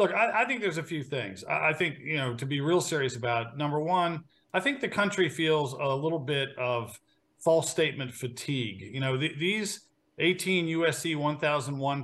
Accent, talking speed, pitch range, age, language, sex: American, 190 wpm, 135-175 Hz, 40-59, English, male